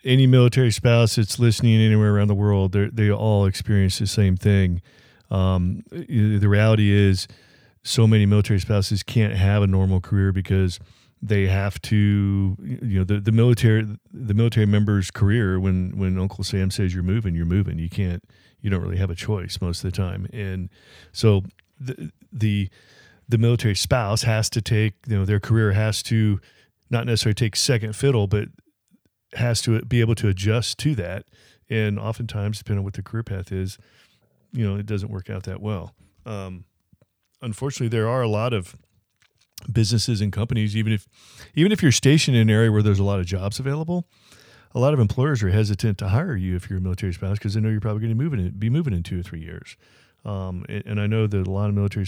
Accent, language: American, English